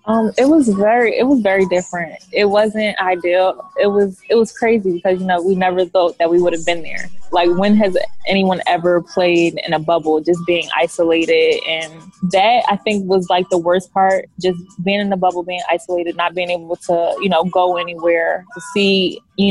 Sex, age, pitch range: female, 20-39, 175-195 Hz